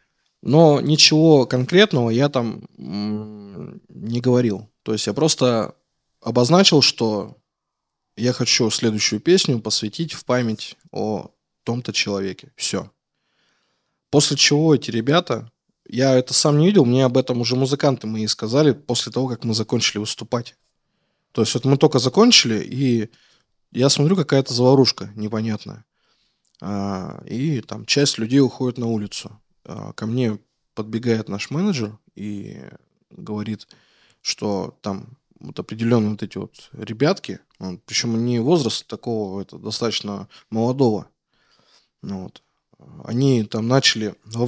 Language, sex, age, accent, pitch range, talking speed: Russian, male, 20-39, native, 110-135 Hz, 120 wpm